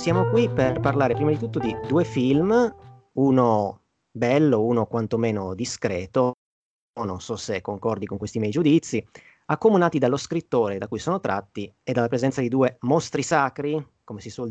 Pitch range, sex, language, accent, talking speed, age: 110-140 Hz, male, Italian, native, 170 wpm, 30-49